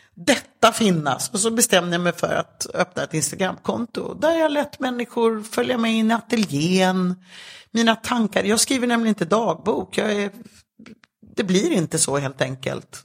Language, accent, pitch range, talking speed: English, Swedish, 155-210 Hz, 165 wpm